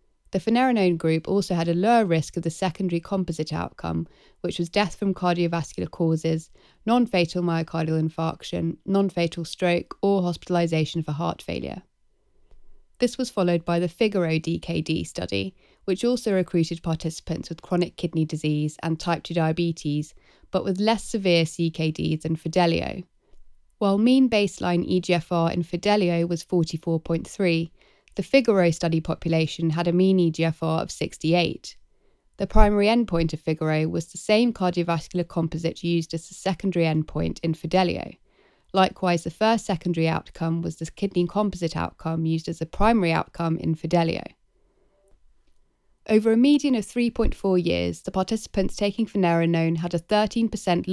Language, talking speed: English, 145 wpm